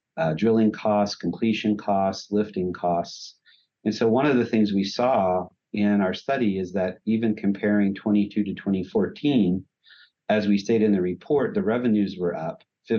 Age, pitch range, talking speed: 50-69, 95-110 Hz, 165 wpm